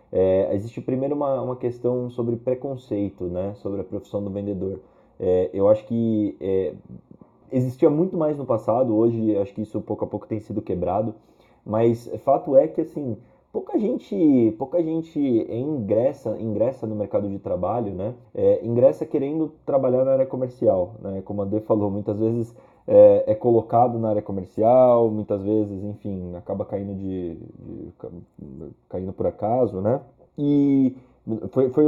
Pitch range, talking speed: 105-140 Hz, 160 wpm